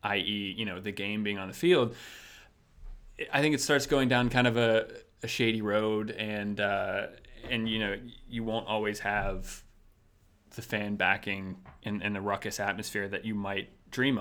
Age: 30-49